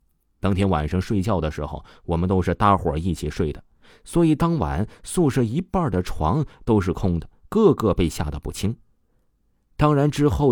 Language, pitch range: Chinese, 85-125 Hz